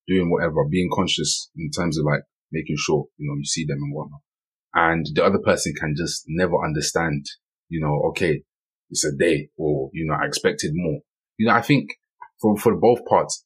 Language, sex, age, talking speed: English, male, 20-39, 200 wpm